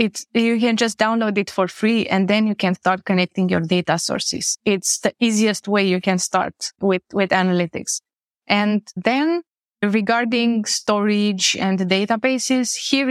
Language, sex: English, female